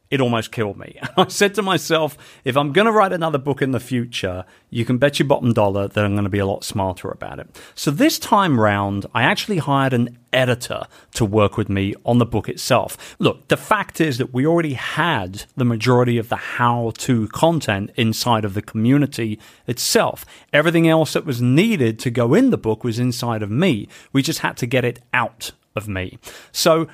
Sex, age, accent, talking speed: male, 40-59, British, 210 wpm